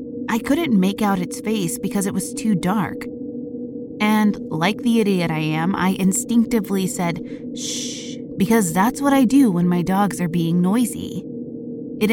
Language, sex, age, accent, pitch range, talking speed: English, female, 20-39, American, 175-240 Hz, 165 wpm